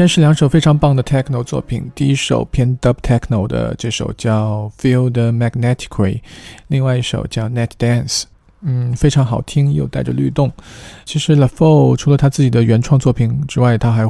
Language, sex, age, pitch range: Chinese, male, 20-39, 110-130 Hz